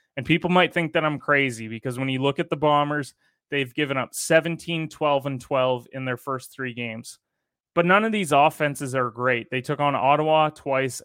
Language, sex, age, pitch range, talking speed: English, male, 20-39, 130-150 Hz, 205 wpm